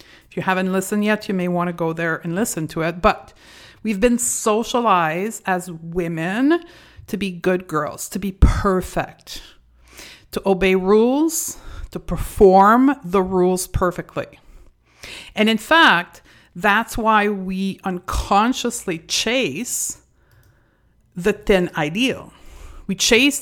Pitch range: 175-215 Hz